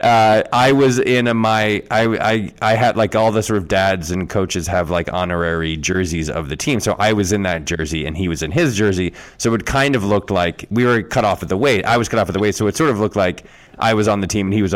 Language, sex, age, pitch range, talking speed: English, male, 20-39, 95-135 Hz, 295 wpm